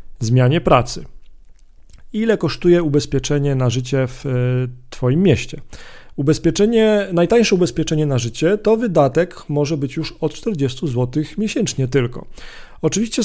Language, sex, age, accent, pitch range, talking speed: Polish, male, 40-59, native, 130-165 Hz, 120 wpm